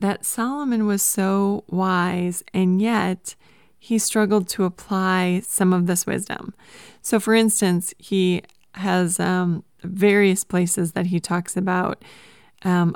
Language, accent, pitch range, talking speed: English, American, 180-205 Hz, 130 wpm